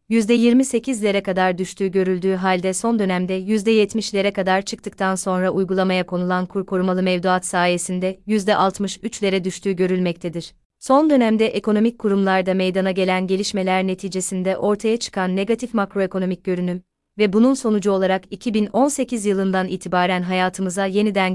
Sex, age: female, 30-49